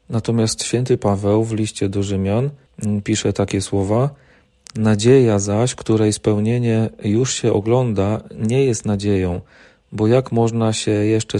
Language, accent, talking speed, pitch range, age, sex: Polish, native, 130 wpm, 105-120 Hz, 40-59, male